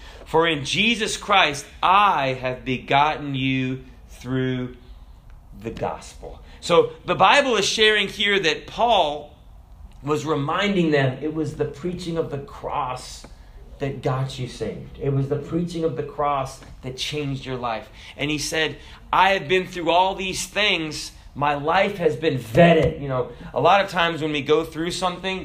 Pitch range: 130-165 Hz